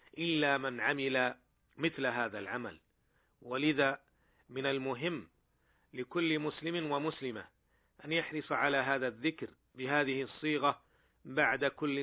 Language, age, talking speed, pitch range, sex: Arabic, 40-59, 105 wpm, 130-145 Hz, male